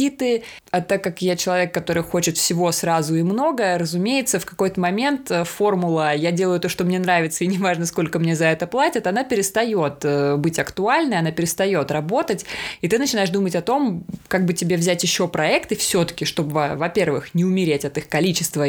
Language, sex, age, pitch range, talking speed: Russian, female, 20-39, 165-210 Hz, 180 wpm